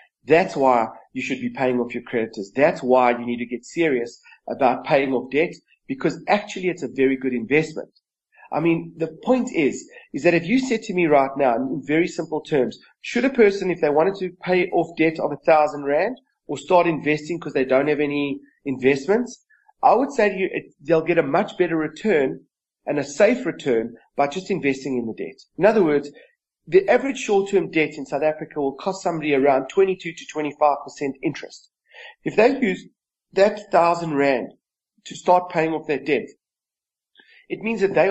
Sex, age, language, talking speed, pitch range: male, 30-49, English, 195 wpm, 140-190 Hz